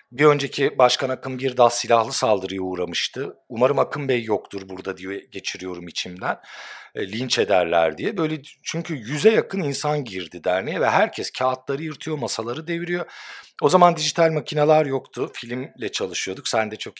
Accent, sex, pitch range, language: native, male, 115-165 Hz, Turkish